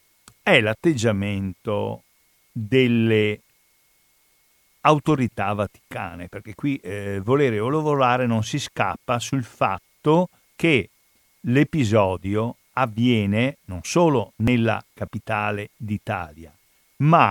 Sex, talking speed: male, 85 wpm